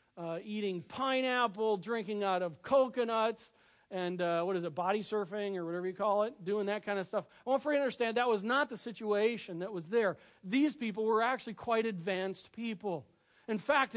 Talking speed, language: 200 wpm, English